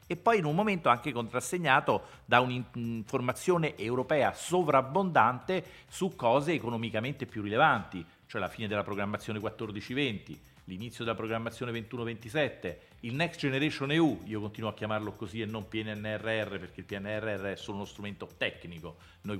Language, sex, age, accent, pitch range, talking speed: Italian, male, 40-59, native, 105-140 Hz, 145 wpm